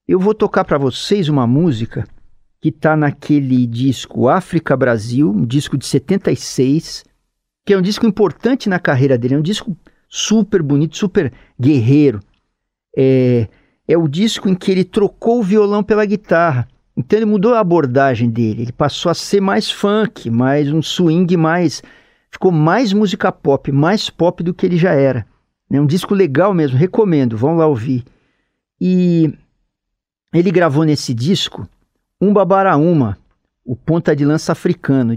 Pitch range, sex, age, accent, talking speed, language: 135-195 Hz, male, 50-69, Brazilian, 155 wpm, Portuguese